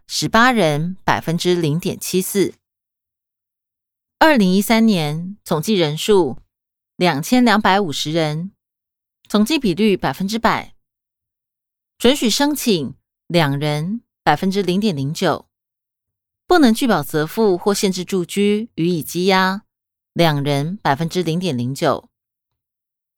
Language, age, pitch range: Chinese, 20-39, 160-215 Hz